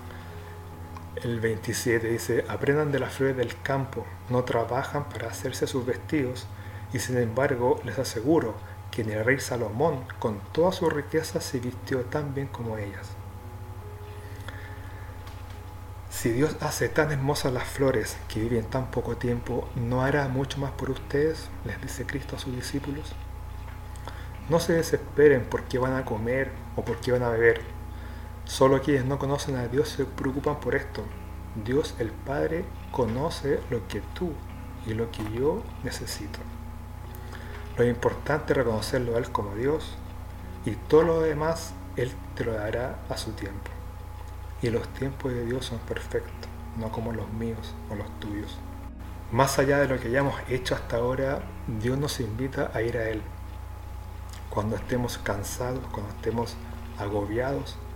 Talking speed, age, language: 155 wpm, 40-59, Spanish